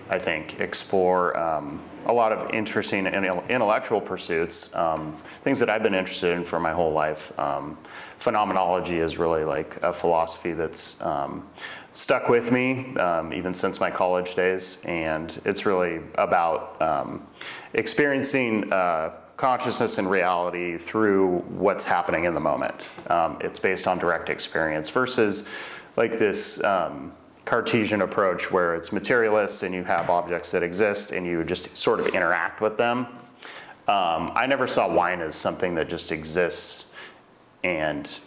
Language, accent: English, American